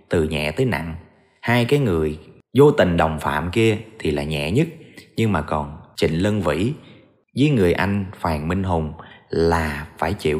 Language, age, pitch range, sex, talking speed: Vietnamese, 30-49, 85-130 Hz, male, 180 wpm